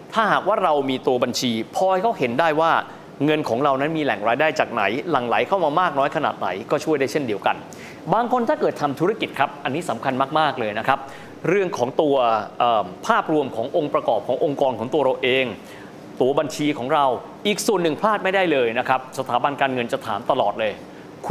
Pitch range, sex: 130-170 Hz, male